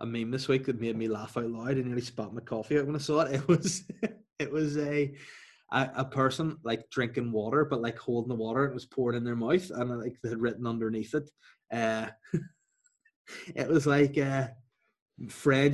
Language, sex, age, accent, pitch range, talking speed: English, male, 20-39, Irish, 120-155 Hz, 210 wpm